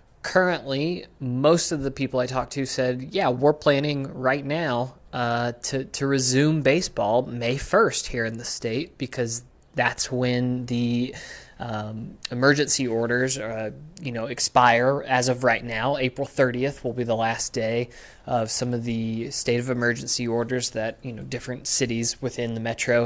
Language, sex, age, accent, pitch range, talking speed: English, male, 20-39, American, 120-140 Hz, 165 wpm